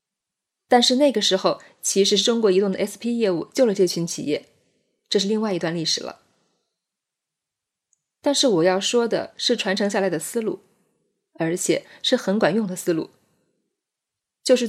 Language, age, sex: Chinese, 20-39, female